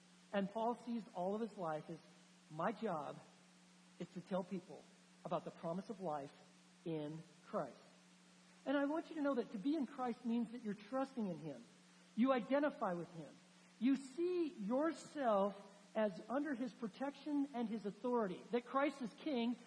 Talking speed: 170 wpm